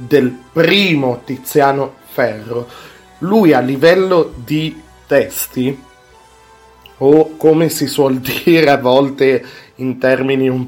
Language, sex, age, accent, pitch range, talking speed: Italian, male, 40-59, native, 130-165 Hz, 105 wpm